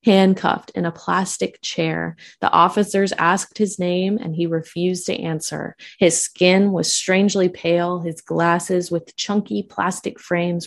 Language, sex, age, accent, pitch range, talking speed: English, female, 20-39, American, 165-205 Hz, 145 wpm